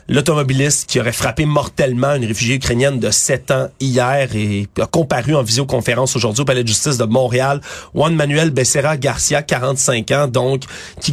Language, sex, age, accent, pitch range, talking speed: French, male, 30-49, Canadian, 120-150 Hz, 175 wpm